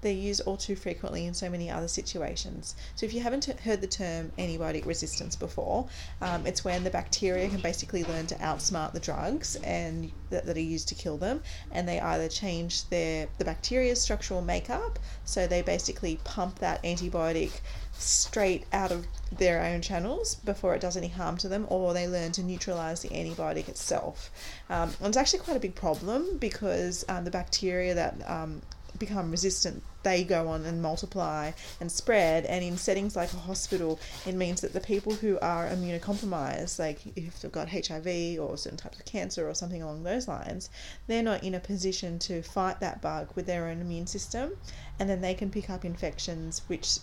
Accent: Australian